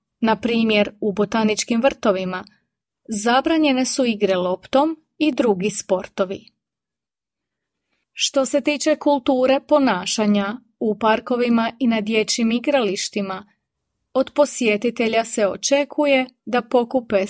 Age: 30-49